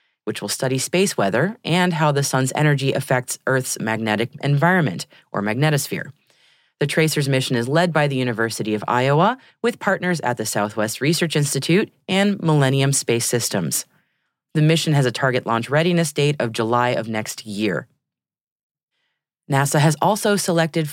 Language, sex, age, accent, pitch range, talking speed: English, female, 30-49, American, 130-185 Hz, 155 wpm